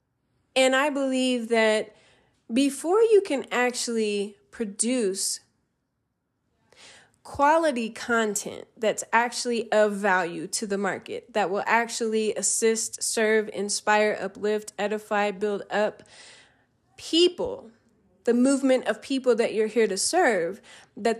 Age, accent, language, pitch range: 20-39, American, English, 195-245 Hz